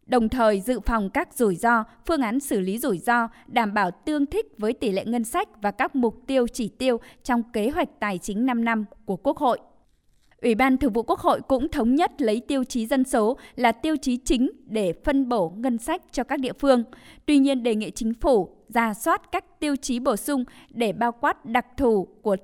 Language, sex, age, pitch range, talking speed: Vietnamese, female, 20-39, 230-275 Hz, 225 wpm